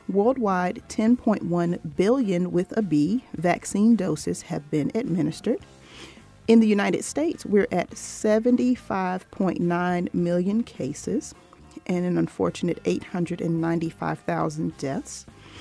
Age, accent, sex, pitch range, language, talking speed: 40-59, American, female, 160-205 Hz, English, 95 wpm